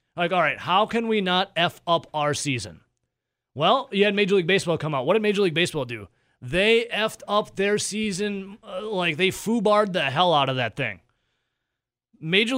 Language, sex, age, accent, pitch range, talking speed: English, male, 30-49, American, 150-205 Hz, 195 wpm